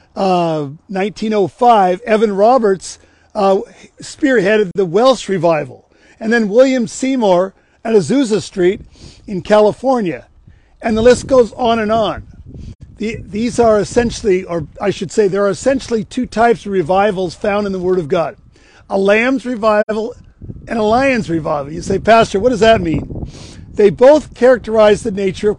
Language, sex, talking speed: English, male, 150 wpm